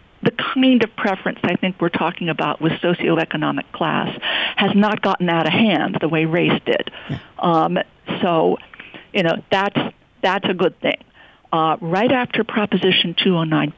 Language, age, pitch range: English, 50-69, 155-190 Hz